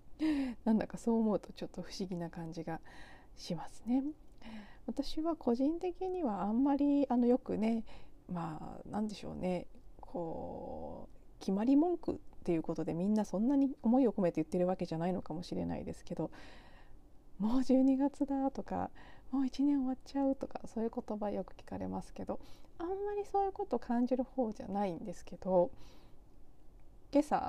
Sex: female